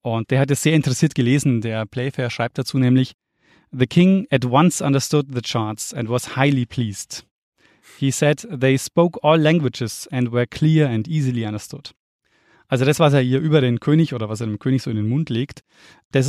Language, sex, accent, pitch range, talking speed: German, male, German, 115-145 Hz, 200 wpm